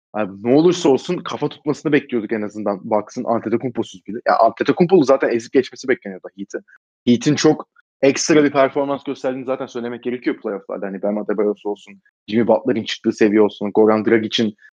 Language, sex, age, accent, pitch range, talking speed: Turkish, male, 30-49, native, 110-135 Hz, 160 wpm